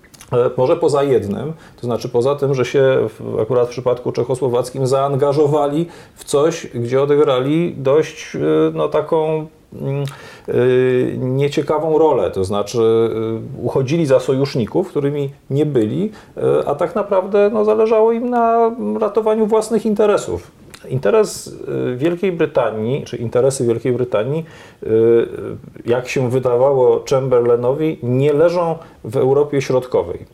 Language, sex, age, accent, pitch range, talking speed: Polish, male, 40-59, native, 120-195 Hz, 110 wpm